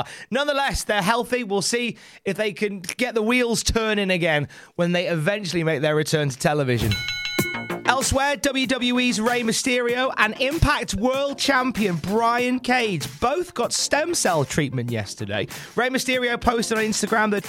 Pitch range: 150-220 Hz